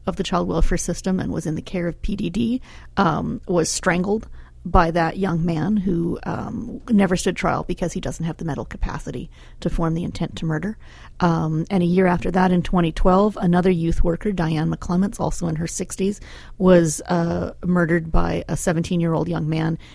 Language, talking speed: English, 185 wpm